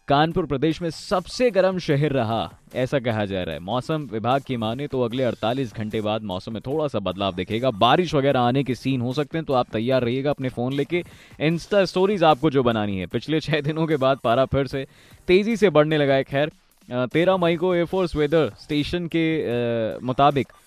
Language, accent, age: Hindi, native, 20-39